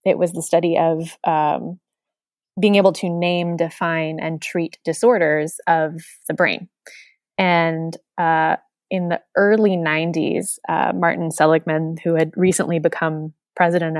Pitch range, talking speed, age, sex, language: 165-185 Hz, 135 wpm, 20-39, female, English